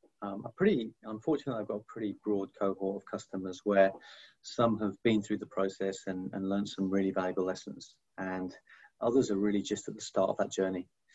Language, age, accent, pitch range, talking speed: English, 30-49, British, 100-110 Hz, 200 wpm